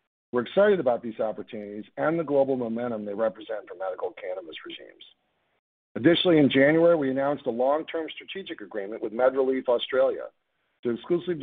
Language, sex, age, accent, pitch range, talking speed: English, male, 50-69, American, 115-160 Hz, 150 wpm